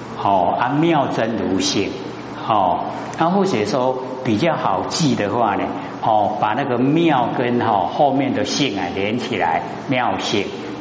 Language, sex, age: Chinese, male, 50-69